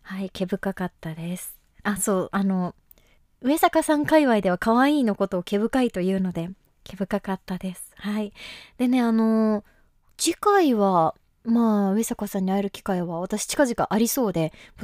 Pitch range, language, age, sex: 195-265 Hz, Japanese, 20-39, female